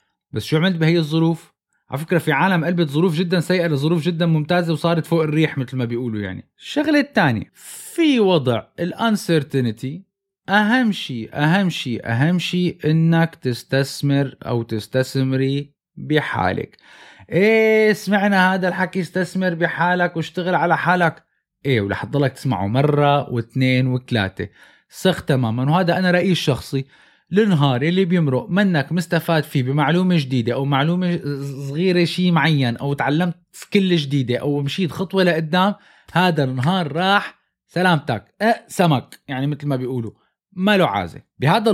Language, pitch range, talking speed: Arabic, 140-180 Hz, 135 wpm